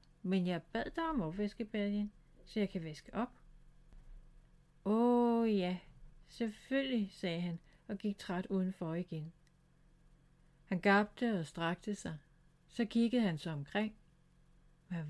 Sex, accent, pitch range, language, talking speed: female, native, 160-220 Hz, Danish, 130 wpm